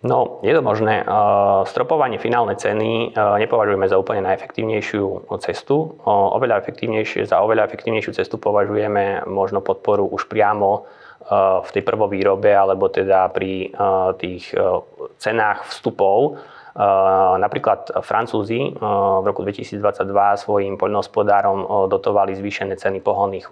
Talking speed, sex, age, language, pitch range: 110 wpm, male, 20-39, Slovak, 95-105 Hz